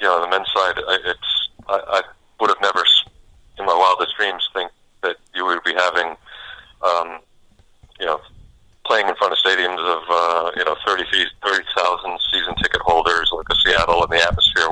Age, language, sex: 40-59, English, male